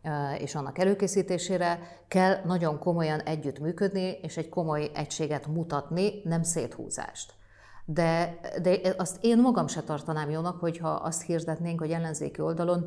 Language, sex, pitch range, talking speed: Hungarian, female, 150-180 Hz, 130 wpm